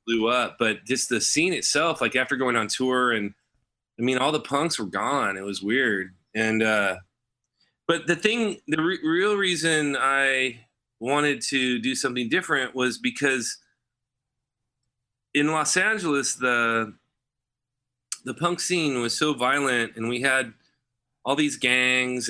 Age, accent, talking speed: 30-49, American, 150 wpm